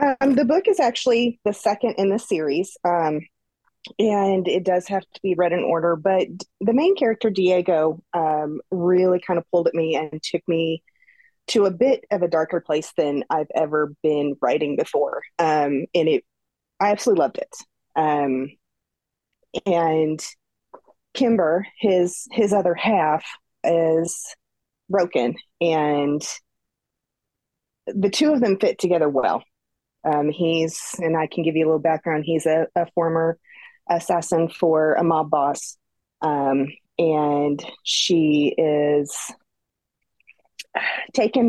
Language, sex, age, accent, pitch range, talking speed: English, female, 30-49, American, 155-200 Hz, 140 wpm